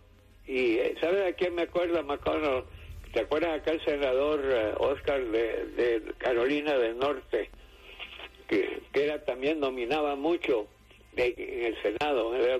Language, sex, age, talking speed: English, male, 60-79, 140 wpm